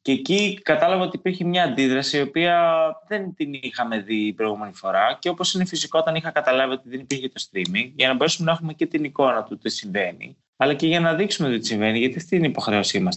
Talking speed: 235 wpm